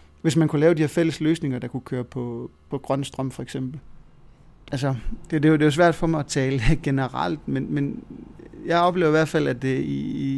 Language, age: Danish, 30-49